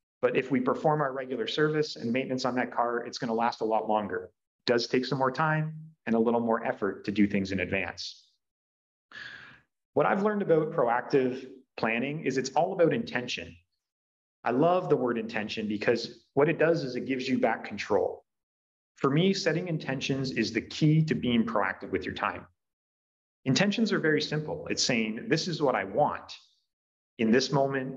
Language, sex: English, male